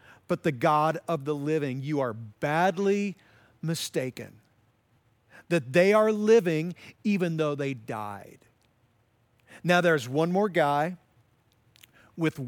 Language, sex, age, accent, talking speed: English, male, 50-69, American, 115 wpm